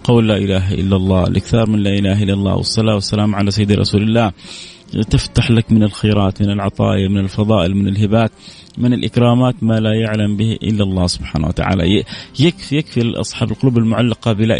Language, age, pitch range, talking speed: Arabic, 30-49, 105-130 Hz, 175 wpm